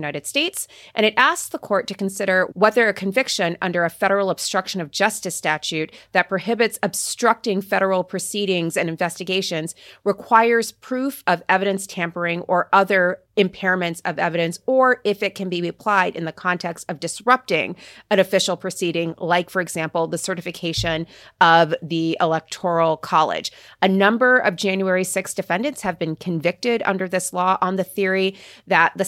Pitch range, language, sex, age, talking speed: 170-205 Hz, English, female, 30-49, 155 wpm